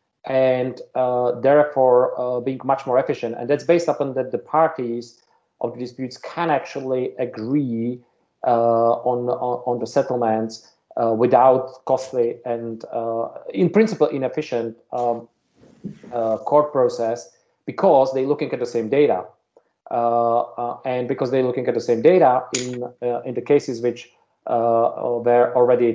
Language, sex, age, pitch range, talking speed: English, male, 40-59, 120-135 Hz, 150 wpm